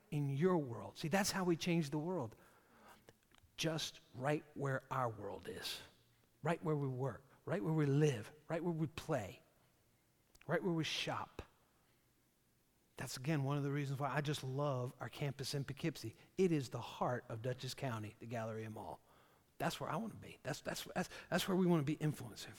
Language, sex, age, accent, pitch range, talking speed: English, male, 50-69, American, 130-175 Hz, 195 wpm